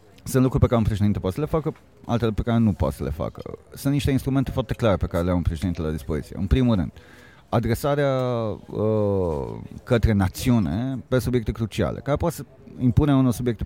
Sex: male